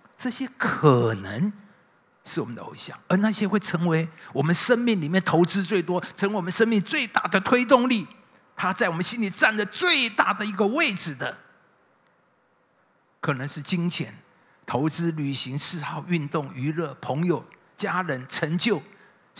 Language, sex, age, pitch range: Chinese, male, 50-69, 150-210 Hz